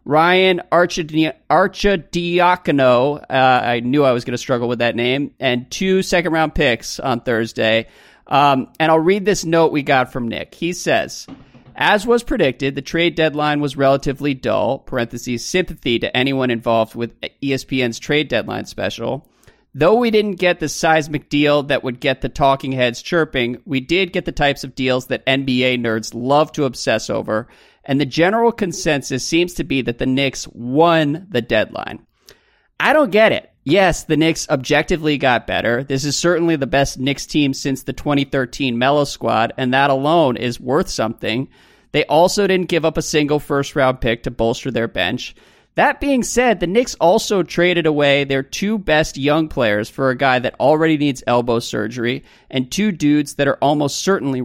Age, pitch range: 40-59, 130-170 Hz